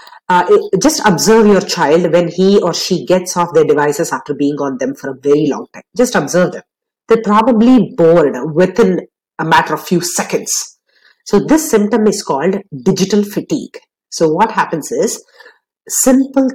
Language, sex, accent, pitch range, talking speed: English, female, Indian, 160-235 Hz, 165 wpm